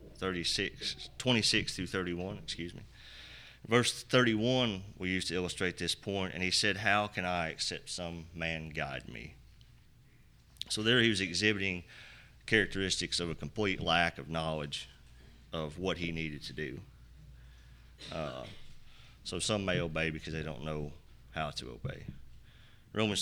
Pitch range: 80-100 Hz